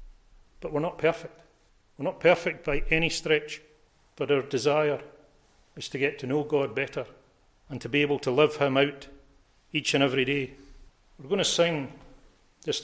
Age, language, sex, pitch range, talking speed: 40-59, English, male, 135-155 Hz, 175 wpm